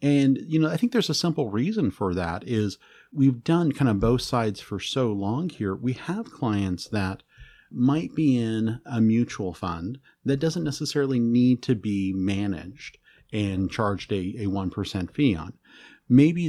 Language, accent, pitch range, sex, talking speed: English, American, 95-135 Hz, male, 170 wpm